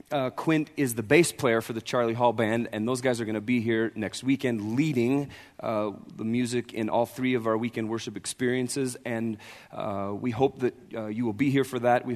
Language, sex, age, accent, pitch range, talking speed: English, male, 30-49, American, 110-130 Hz, 225 wpm